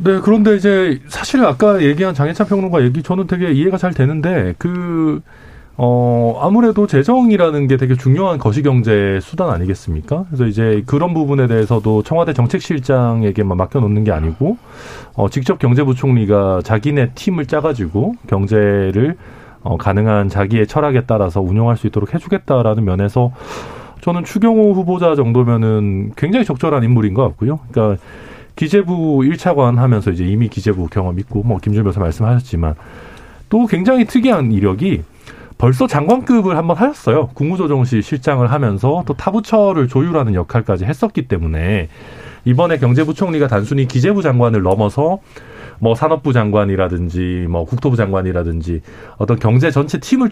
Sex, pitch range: male, 105-160 Hz